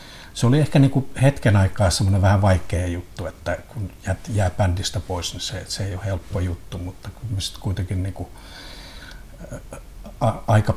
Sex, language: male, Finnish